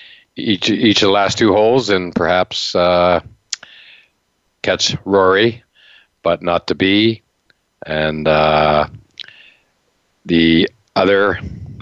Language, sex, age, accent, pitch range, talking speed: English, male, 50-69, American, 80-95 Hz, 100 wpm